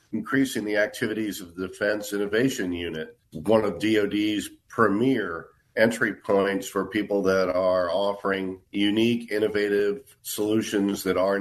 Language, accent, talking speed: English, American, 125 wpm